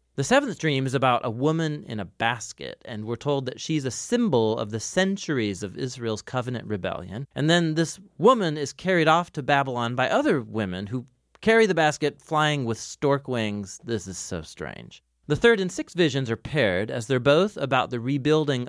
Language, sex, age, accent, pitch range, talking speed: English, male, 30-49, American, 110-155 Hz, 200 wpm